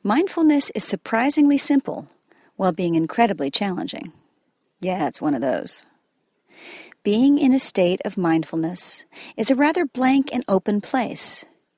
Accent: American